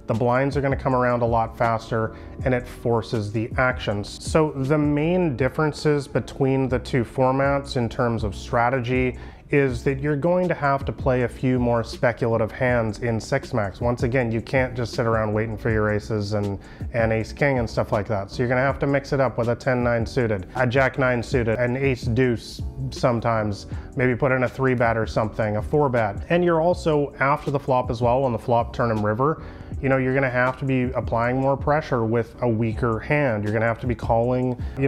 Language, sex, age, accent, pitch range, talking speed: English, male, 30-49, American, 110-135 Hz, 225 wpm